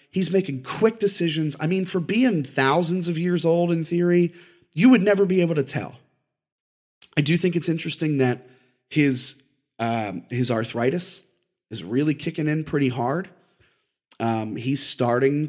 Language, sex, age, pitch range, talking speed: English, male, 30-49, 130-185 Hz, 155 wpm